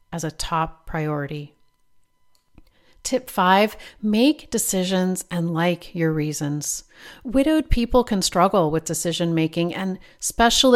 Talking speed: 115 wpm